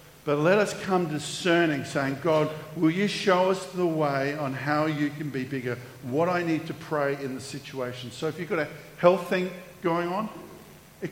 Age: 50-69